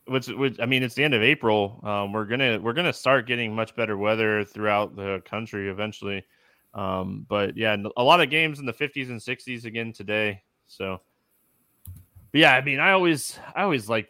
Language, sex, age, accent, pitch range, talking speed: English, male, 20-39, American, 105-135 Hz, 205 wpm